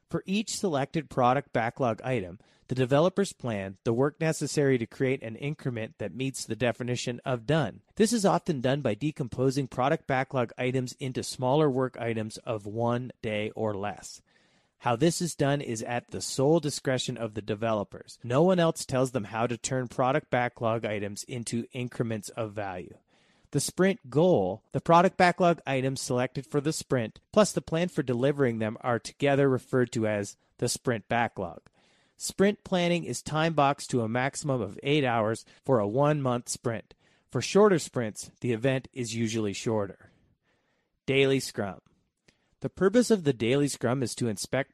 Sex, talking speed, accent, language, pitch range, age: male, 170 wpm, American, English, 115-145 Hz, 30-49